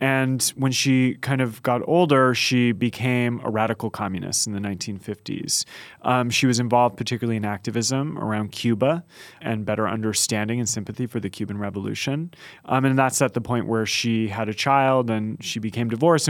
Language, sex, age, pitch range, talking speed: English, male, 30-49, 110-130 Hz, 175 wpm